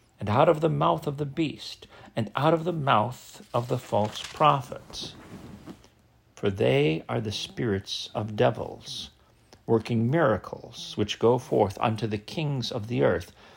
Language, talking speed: English, 155 wpm